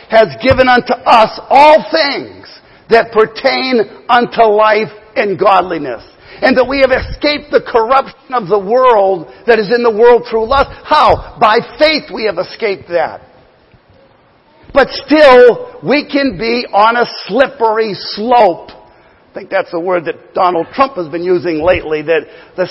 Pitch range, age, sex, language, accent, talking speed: 175-240 Hz, 50-69, male, English, American, 155 wpm